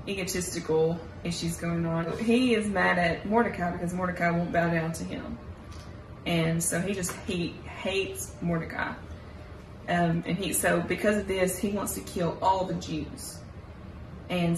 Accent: American